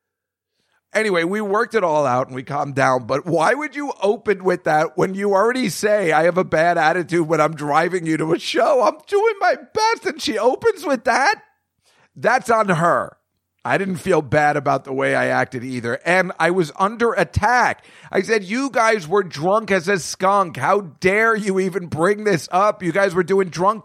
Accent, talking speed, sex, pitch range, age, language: American, 205 wpm, male, 150-220 Hz, 40-59, English